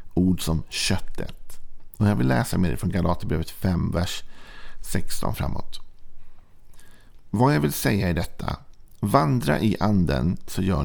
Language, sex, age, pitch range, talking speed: Swedish, male, 50-69, 80-100 Hz, 145 wpm